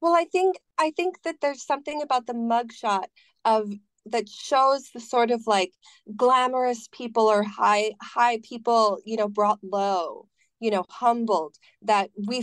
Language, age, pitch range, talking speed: English, 30-49, 200-250 Hz, 160 wpm